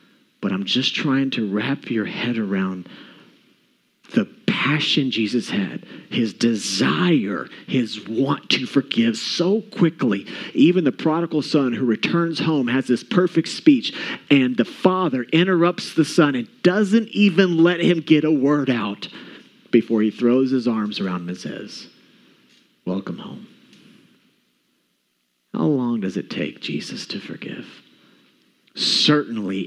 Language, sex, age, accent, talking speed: English, male, 40-59, American, 135 wpm